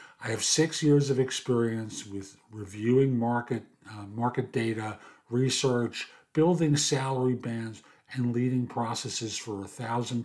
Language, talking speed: English, 130 wpm